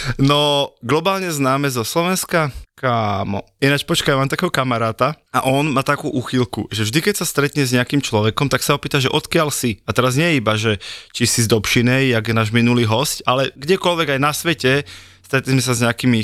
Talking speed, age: 205 wpm, 20-39